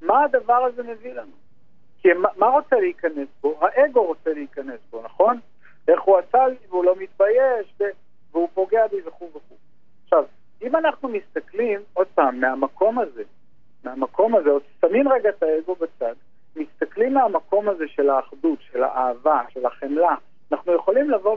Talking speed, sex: 155 wpm, male